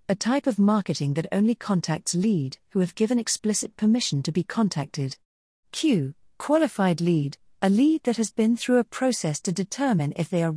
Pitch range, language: 155-215 Hz, English